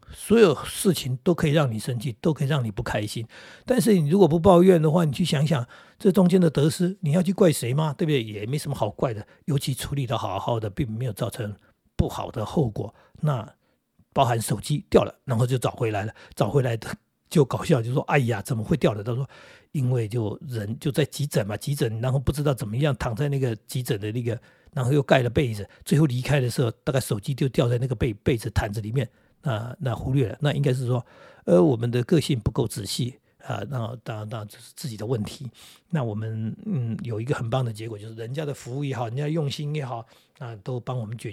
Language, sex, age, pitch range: Chinese, male, 60-79, 120-155 Hz